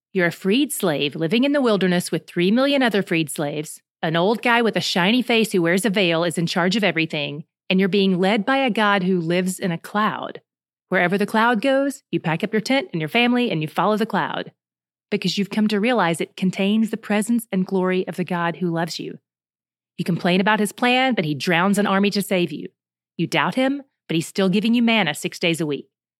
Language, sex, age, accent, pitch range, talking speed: English, female, 30-49, American, 165-215 Hz, 235 wpm